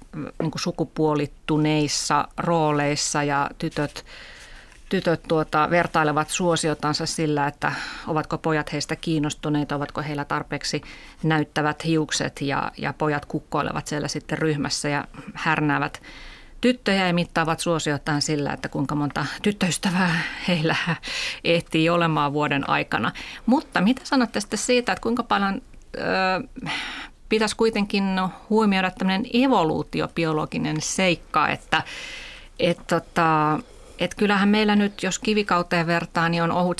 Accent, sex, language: native, female, Finnish